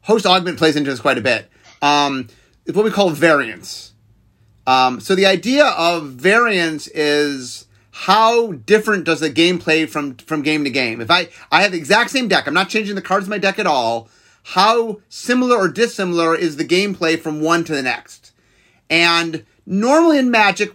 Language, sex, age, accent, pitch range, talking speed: English, male, 30-49, American, 155-210 Hz, 190 wpm